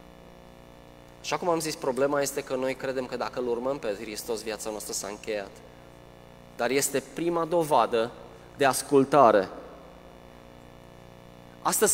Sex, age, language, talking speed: male, 20-39, Romanian, 130 wpm